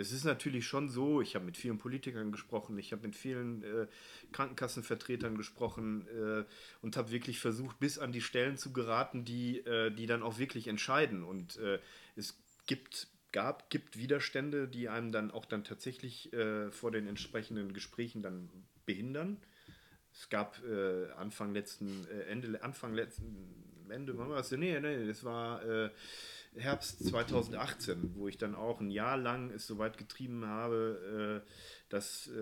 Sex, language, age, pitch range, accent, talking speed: male, German, 40-59, 110-130 Hz, German, 160 wpm